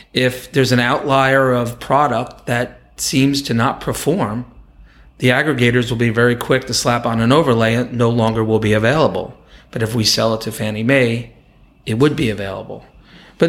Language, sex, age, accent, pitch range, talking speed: English, male, 30-49, American, 110-130 Hz, 180 wpm